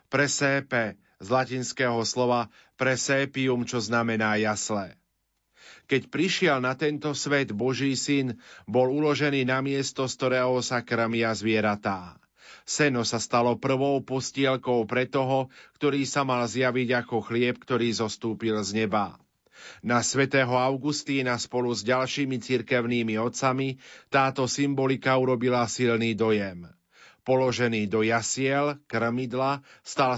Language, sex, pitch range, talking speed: Slovak, male, 115-135 Hz, 115 wpm